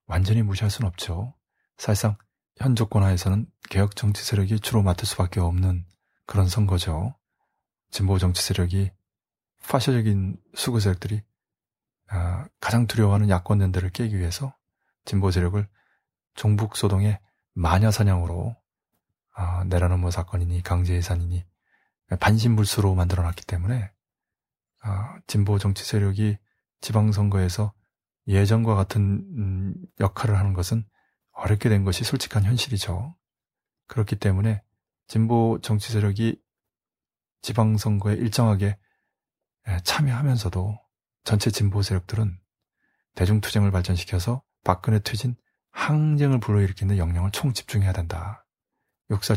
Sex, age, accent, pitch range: male, 20-39, native, 95-110 Hz